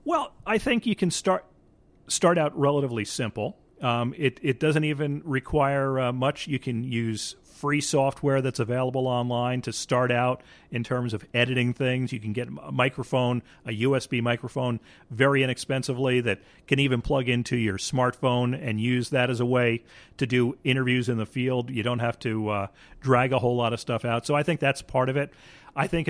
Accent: American